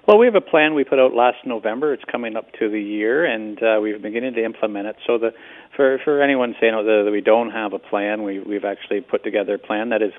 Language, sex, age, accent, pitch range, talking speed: English, male, 40-59, American, 105-115 Hz, 265 wpm